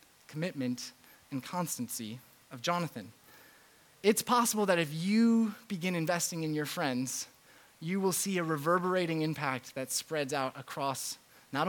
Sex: male